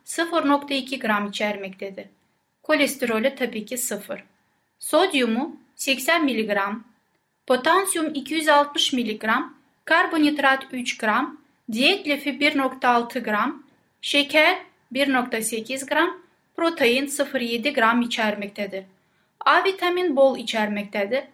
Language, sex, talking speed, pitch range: Turkish, female, 85 wpm, 225-305 Hz